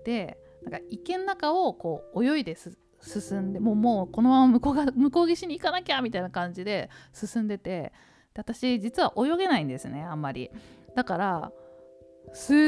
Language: Japanese